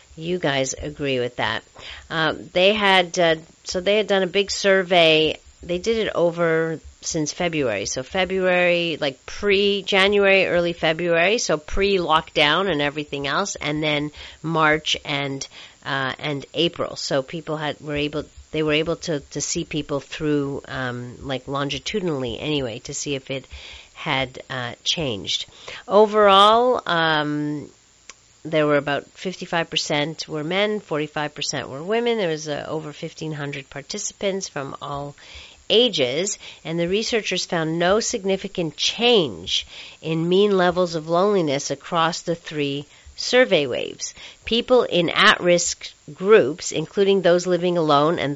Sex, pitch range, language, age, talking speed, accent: female, 150-195 Hz, English, 50-69, 140 wpm, American